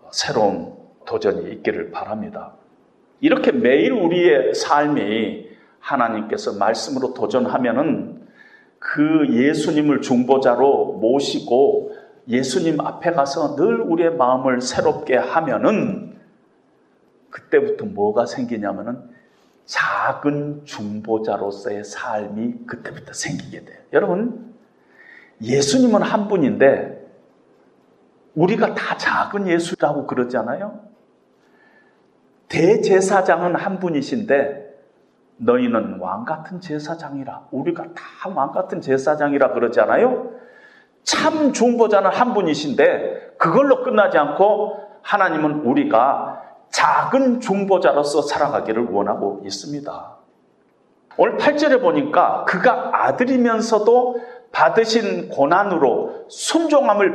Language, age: Korean, 40-59